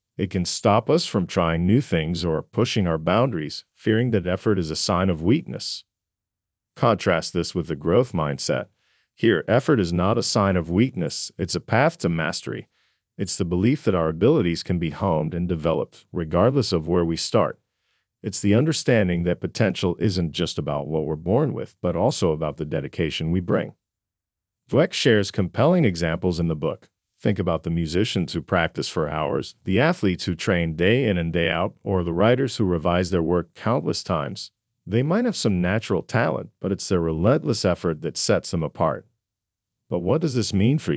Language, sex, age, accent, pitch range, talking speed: English, male, 40-59, American, 85-110 Hz, 190 wpm